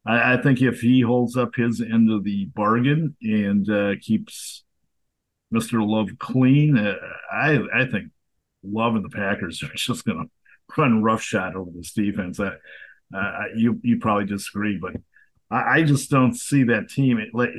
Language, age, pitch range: English, 50-69, 100-120 Hz